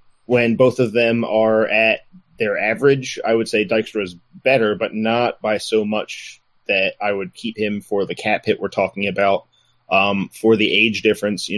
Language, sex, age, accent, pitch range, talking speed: English, male, 30-49, American, 105-120 Hz, 190 wpm